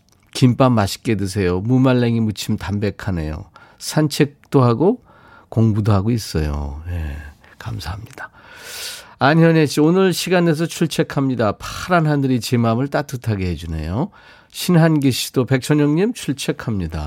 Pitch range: 105-140 Hz